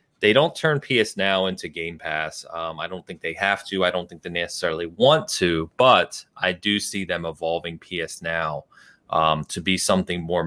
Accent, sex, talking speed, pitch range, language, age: American, male, 200 wpm, 80-105 Hz, English, 30-49